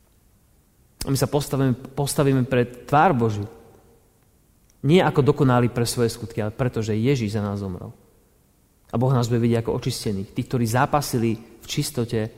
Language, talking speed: Slovak, 155 wpm